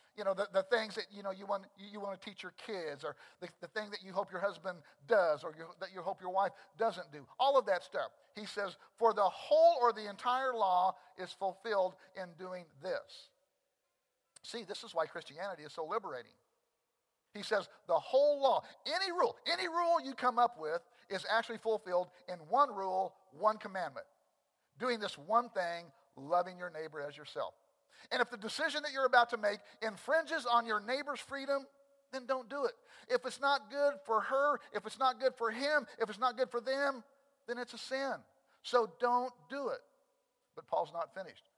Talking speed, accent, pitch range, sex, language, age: 200 wpm, American, 185-265 Hz, male, English, 50-69